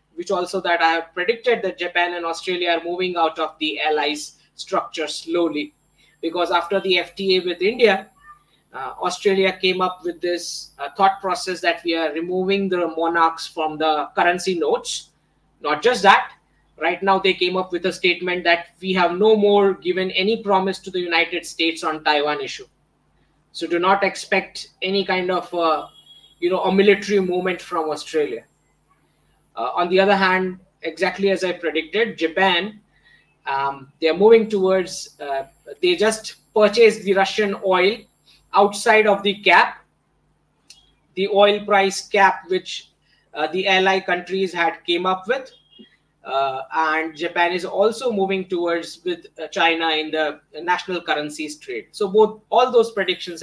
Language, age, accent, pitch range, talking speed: English, 20-39, Indian, 165-195 Hz, 160 wpm